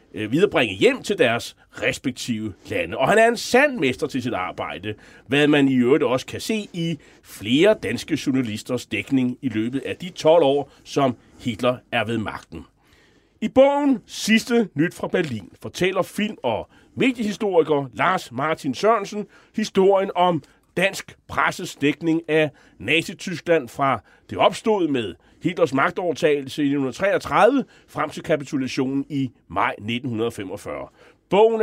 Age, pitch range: 30-49, 130-200 Hz